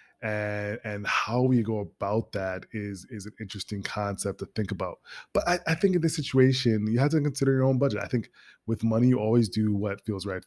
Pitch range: 100-120 Hz